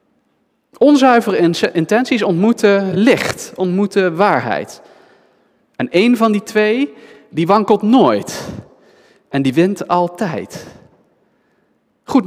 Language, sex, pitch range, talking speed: Dutch, male, 165-215 Hz, 95 wpm